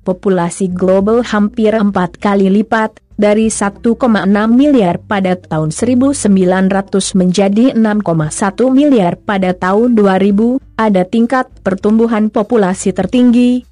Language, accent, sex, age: Indonesian, native, female, 20-39